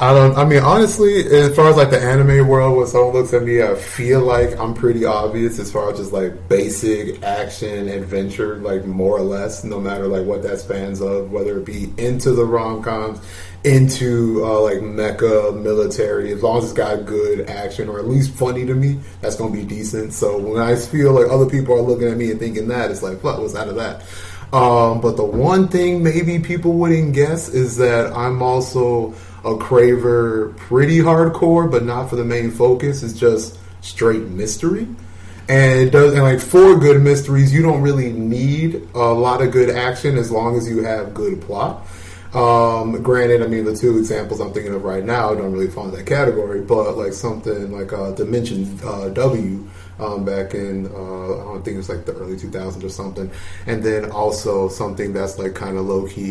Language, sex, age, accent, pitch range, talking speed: English, male, 20-39, American, 100-130 Hz, 205 wpm